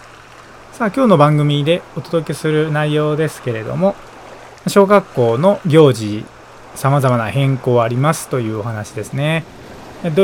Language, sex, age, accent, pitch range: Japanese, male, 20-39, native, 125-170 Hz